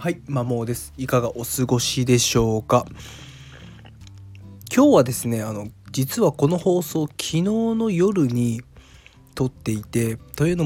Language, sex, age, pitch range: Japanese, male, 20-39, 110-150 Hz